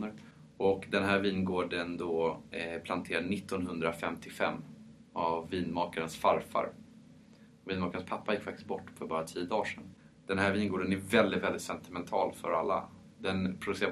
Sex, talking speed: male, 140 wpm